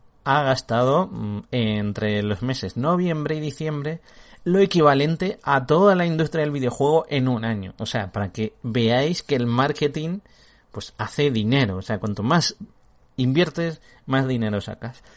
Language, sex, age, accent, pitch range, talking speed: Spanish, male, 30-49, Spanish, 110-150 Hz, 150 wpm